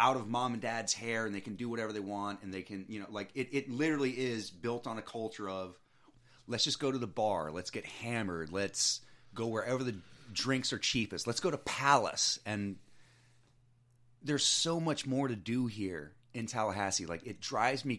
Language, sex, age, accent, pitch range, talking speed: English, male, 30-49, American, 100-135 Hz, 205 wpm